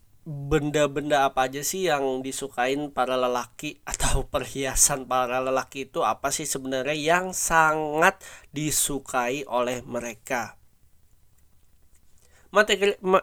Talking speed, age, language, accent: 100 wpm, 20-39, Indonesian, native